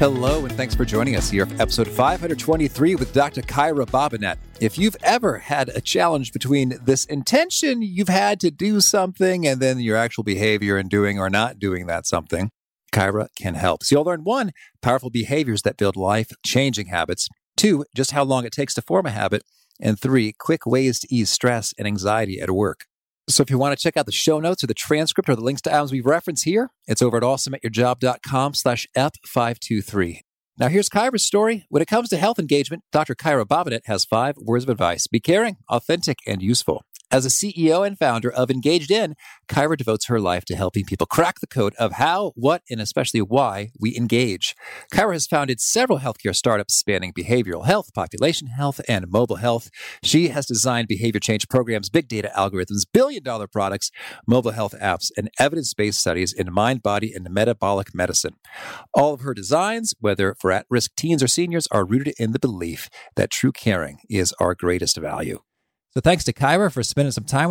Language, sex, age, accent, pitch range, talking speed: English, male, 40-59, American, 105-155 Hz, 195 wpm